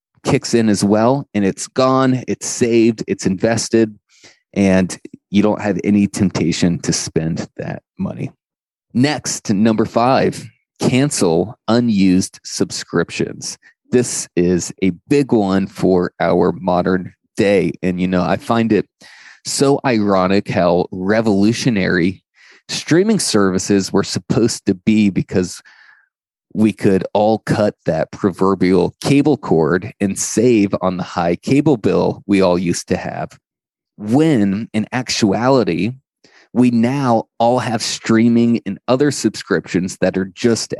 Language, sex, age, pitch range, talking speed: English, male, 30-49, 95-120 Hz, 130 wpm